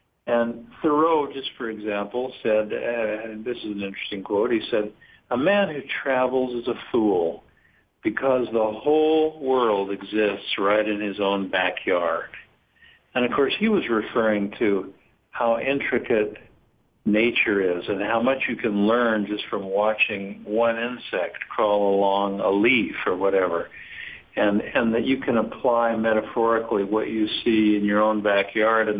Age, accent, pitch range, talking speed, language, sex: 60-79, American, 105-125 Hz, 155 wpm, English, male